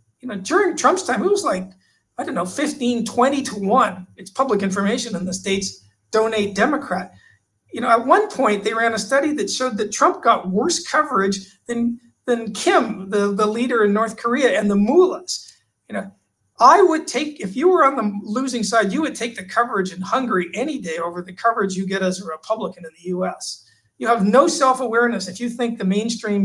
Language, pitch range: English, 195-240 Hz